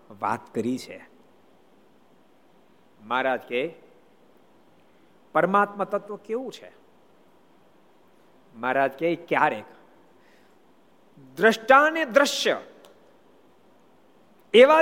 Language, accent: Gujarati, native